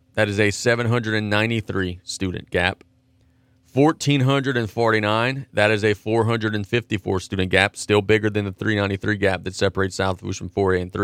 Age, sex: 30-49, male